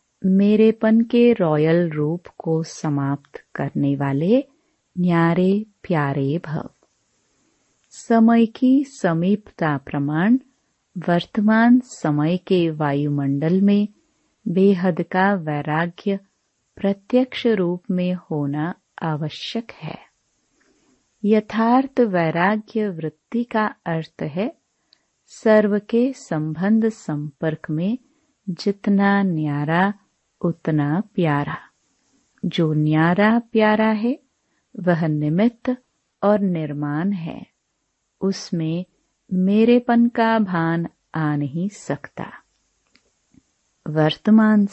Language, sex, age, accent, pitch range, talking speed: Hindi, female, 30-49, native, 160-225 Hz, 80 wpm